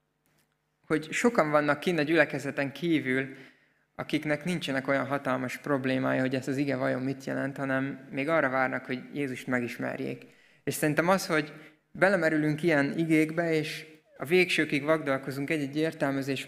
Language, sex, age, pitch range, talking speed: Hungarian, male, 20-39, 130-155 Hz, 140 wpm